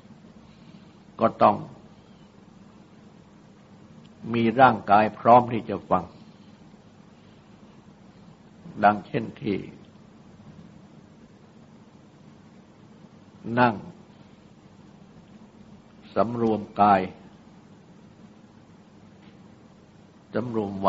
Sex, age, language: male, 60-79, Thai